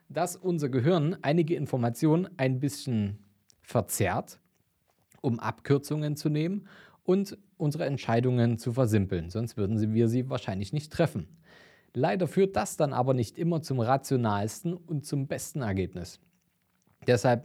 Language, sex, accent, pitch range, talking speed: German, male, German, 120-155 Hz, 130 wpm